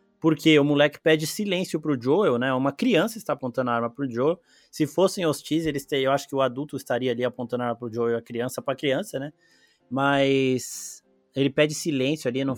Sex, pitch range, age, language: male, 130-160 Hz, 20-39, Portuguese